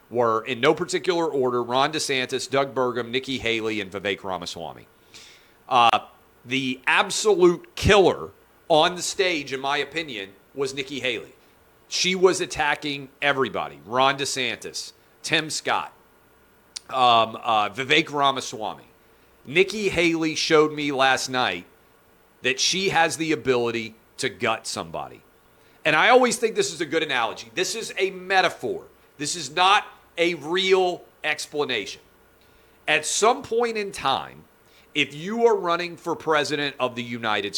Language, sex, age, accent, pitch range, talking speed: English, male, 40-59, American, 130-185 Hz, 135 wpm